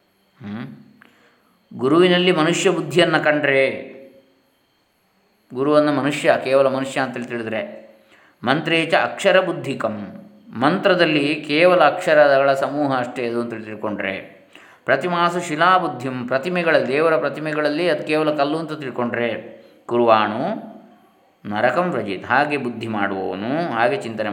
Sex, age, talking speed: male, 20-39, 95 wpm